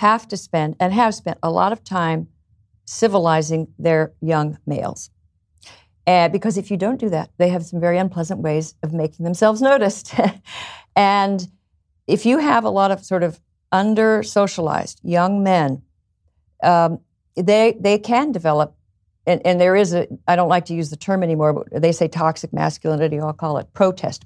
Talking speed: 175 wpm